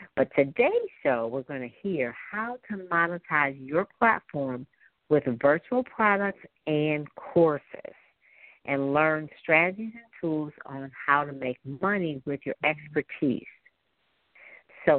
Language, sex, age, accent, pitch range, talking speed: English, female, 50-69, American, 140-210 Hz, 125 wpm